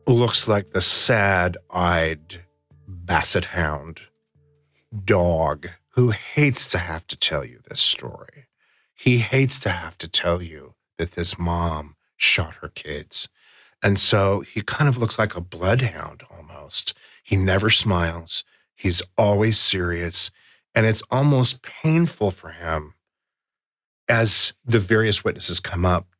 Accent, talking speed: American, 130 wpm